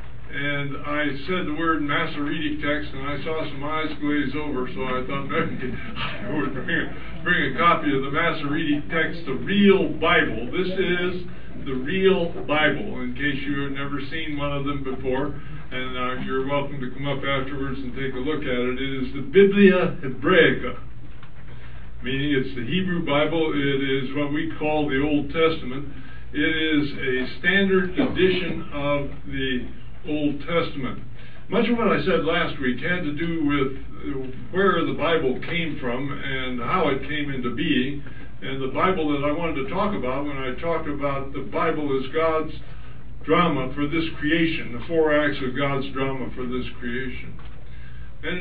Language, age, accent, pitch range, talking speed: English, 60-79, American, 130-160 Hz, 175 wpm